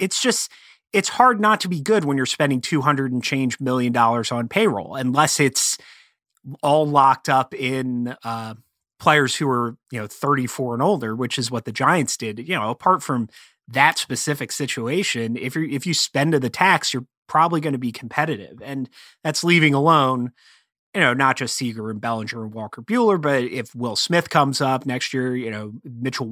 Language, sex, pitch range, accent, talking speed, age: English, male, 120-155 Hz, American, 195 wpm, 30-49